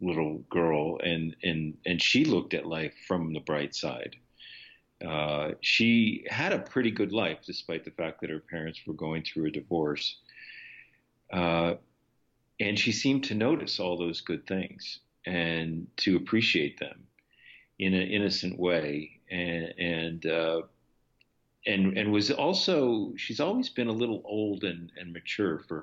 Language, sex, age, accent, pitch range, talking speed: English, male, 50-69, American, 80-100 Hz, 155 wpm